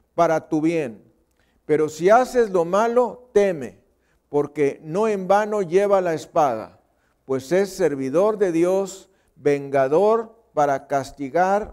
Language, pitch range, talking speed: Spanish, 145-205 Hz, 125 wpm